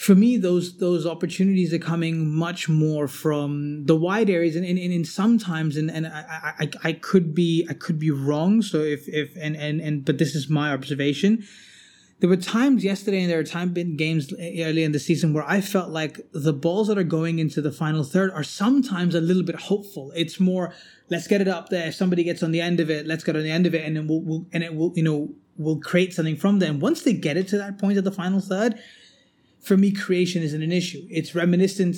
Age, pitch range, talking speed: 20-39, 155-185 Hz, 235 wpm